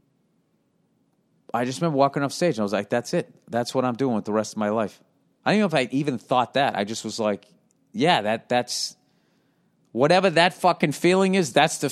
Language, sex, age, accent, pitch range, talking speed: English, male, 40-59, American, 115-140 Hz, 225 wpm